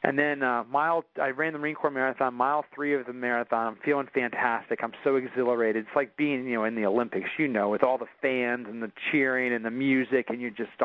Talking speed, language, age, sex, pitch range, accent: 245 wpm, English, 40-59, male, 125-145 Hz, American